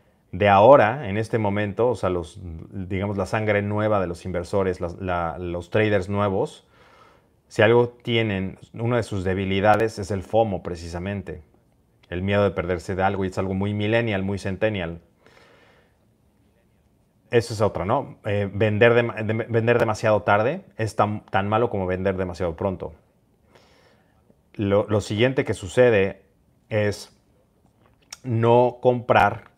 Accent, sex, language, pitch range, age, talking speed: Mexican, male, Spanish, 95-110 Hz, 30-49, 145 wpm